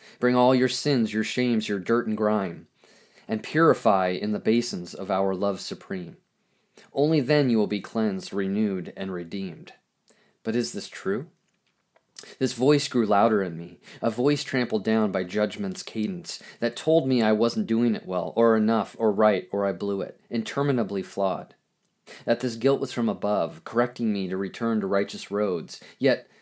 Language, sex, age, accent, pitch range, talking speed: English, male, 30-49, American, 105-135 Hz, 175 wpm